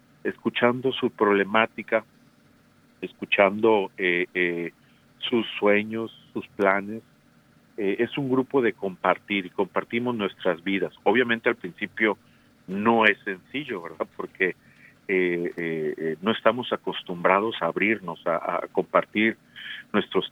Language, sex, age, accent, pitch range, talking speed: Spanish, male, 50-69, Mexican, 95-120 Hz, 115 wpm